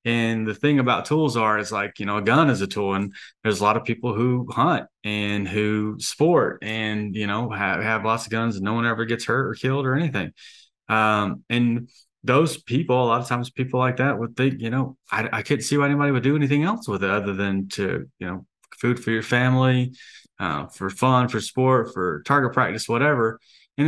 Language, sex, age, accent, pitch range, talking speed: English, male, 30-49, American, 105-130 Hz, 225 wpm